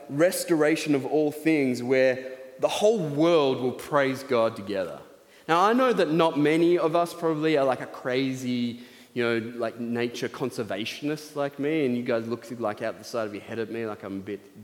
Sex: male